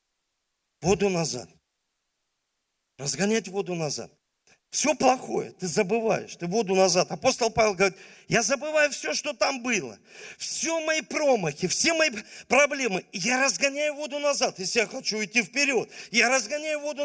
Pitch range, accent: 215-285 Hz, native